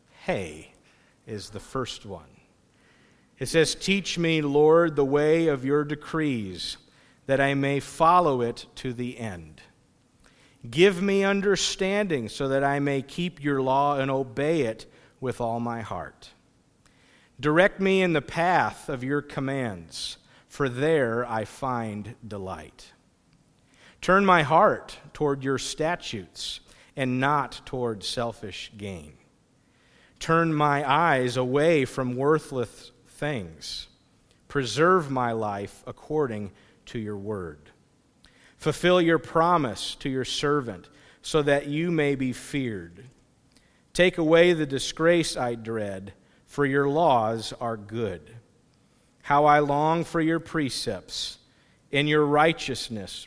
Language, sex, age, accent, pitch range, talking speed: English, male, 50-69, American, 115-155 Hz, 125 wpm